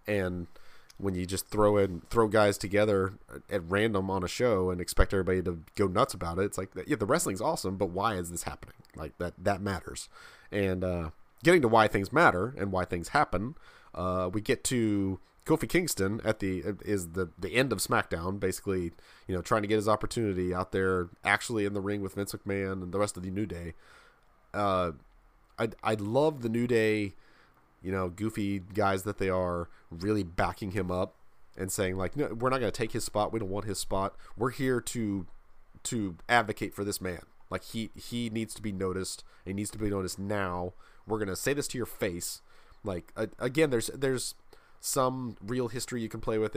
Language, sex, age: English, male, 30-49